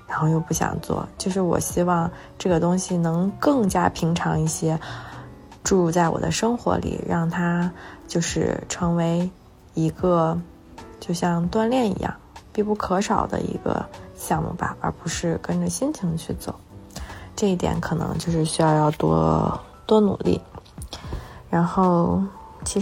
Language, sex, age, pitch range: Chinese, female, 20-39, 165-195 Hz